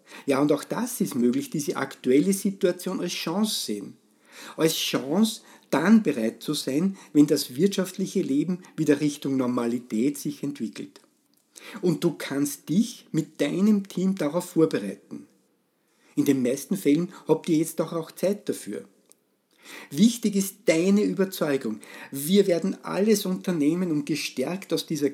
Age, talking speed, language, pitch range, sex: 50-69, 140 wpm, German, 140-190 Hz, male